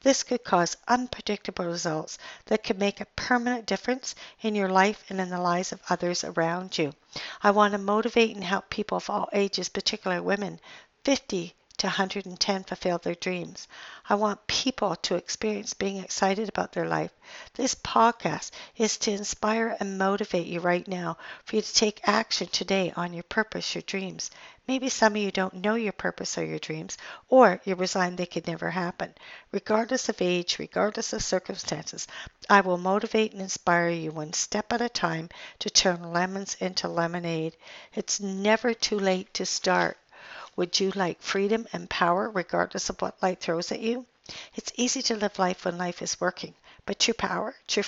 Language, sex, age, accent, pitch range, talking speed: English, female, 60-79, American, 180-220 Hz, 180 wpm